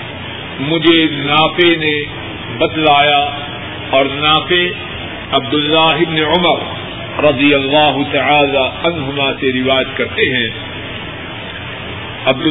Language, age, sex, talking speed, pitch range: Urdu, 50-69, male, 85 wpm, 125-160 Hz